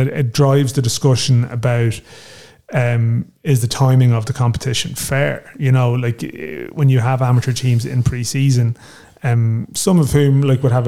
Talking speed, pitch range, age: 165 wpm, 120-135 Hz, 30-49